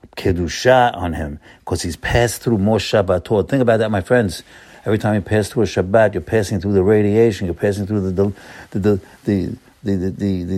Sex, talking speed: male, 215 wpm